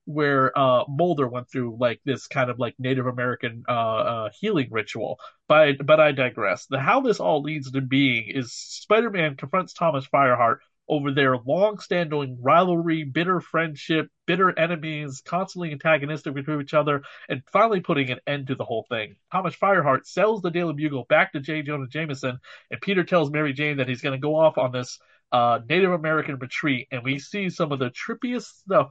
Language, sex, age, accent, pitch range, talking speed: English, male, 30-49, American, 130-165 Hz, 190 wpm